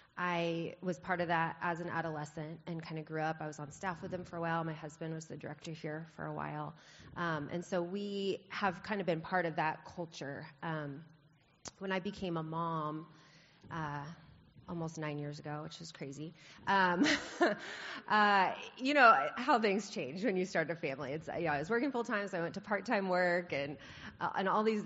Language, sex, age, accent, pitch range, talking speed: English, female, 30-49, American, 150-185 Hz, 215 wpm